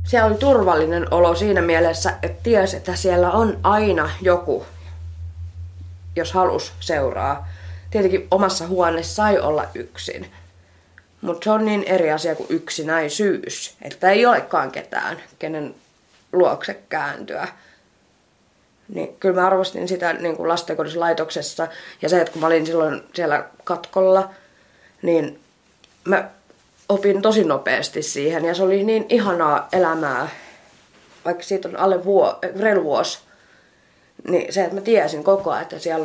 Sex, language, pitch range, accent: female, Finnish, 160-190 Hz, native